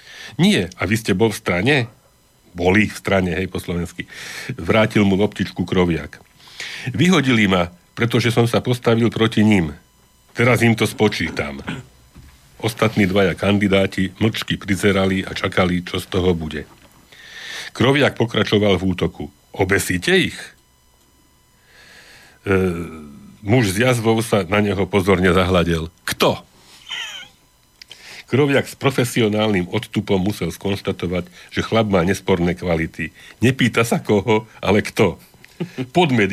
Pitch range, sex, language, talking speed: 90-115 Hz, male, Slovak, 120 wpm